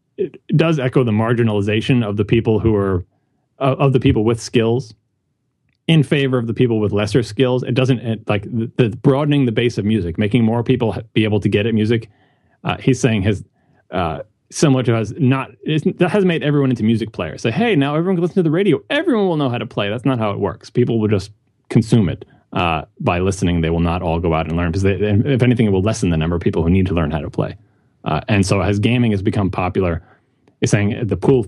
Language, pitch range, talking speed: English, 100-130 Hz, 240 wpm